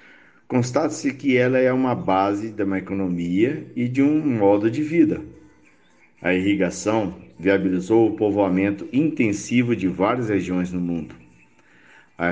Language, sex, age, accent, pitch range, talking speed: Portuguese, male, 50-69, Brazilian, 85-125 Hz, 130 wpm